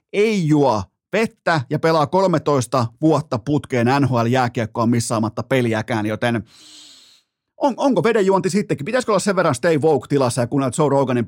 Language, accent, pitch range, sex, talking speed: Finnish, native, 120-165 Hz, male, 145 wpm